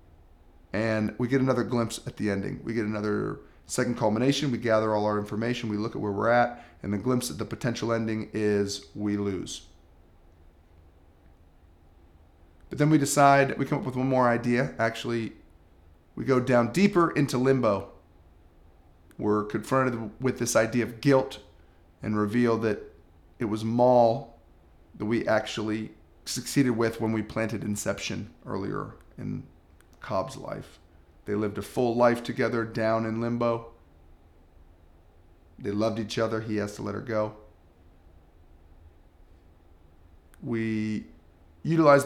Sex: male